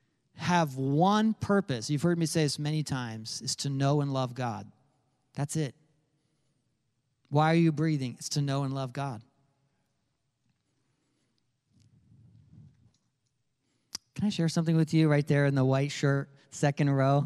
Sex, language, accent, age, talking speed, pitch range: male, English, American, 40-59, 145 wpm, 125-150 Hz